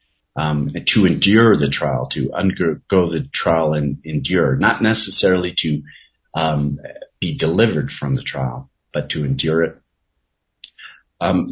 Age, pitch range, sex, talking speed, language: 40-59, 80-105 Hz, male, 130 wpm, English